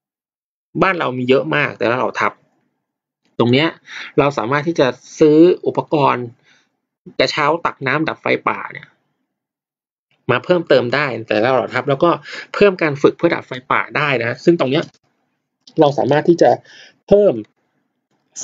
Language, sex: Thai, male